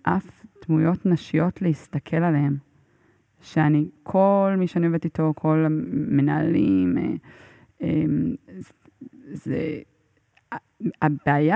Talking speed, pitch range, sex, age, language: 80 wpm, 155-200 Hz, female, 20-39, Hebrew